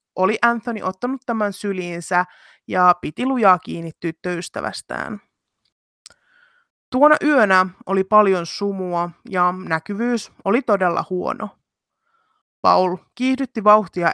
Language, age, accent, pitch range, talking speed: Finnish, 20-39, native, 180-230 Hz, 100 wpm